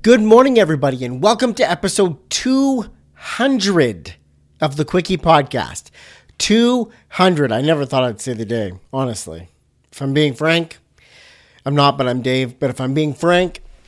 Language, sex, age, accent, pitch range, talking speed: English, male, 40-59, American, 135-190 Hz, 150 wpm